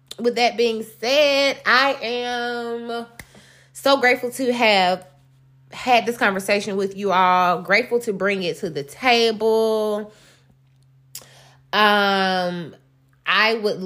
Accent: American